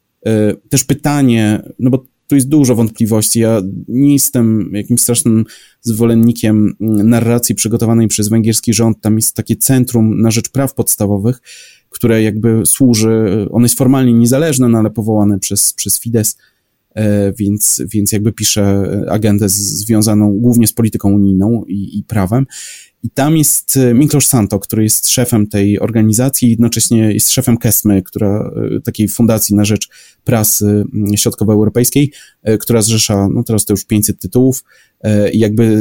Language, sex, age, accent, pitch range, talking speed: Polish, male, 30-49, native, 105-120 Hz, 140 wpm